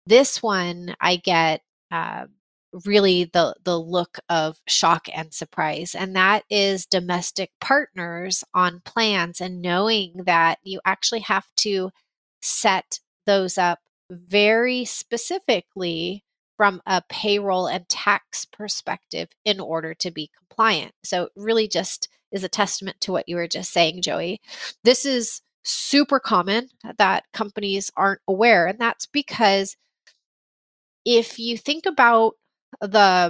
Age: 30-49